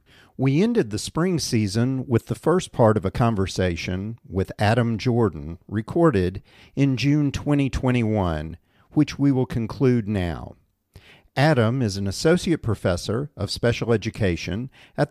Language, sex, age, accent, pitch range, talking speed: English, male, 50-69, American, 100-140 Hz, 130 wpm